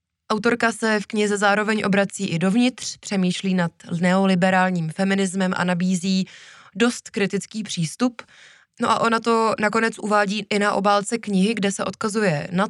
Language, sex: Czech, female